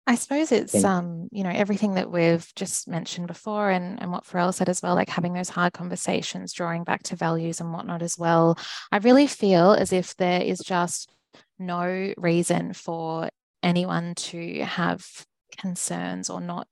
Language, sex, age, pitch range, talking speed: English, female, 20-39, 175-205 Hz, 175 wpm